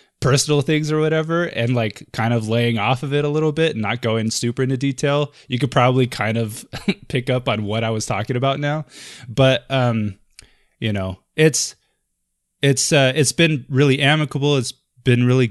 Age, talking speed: 20-39, 190 wpm